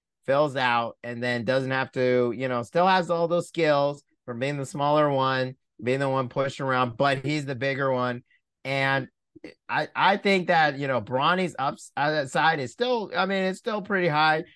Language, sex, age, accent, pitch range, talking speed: English, male, 30-49, American, 120-150 Hz, 200 wpm